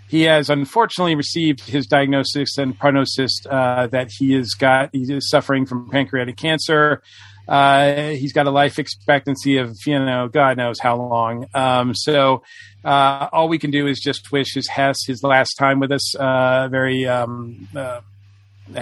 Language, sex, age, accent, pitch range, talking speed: English, male, 40-59, American, 130-150 Hz, 160 wpm